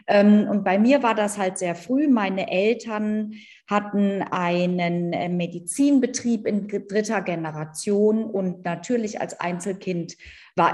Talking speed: 115 wpm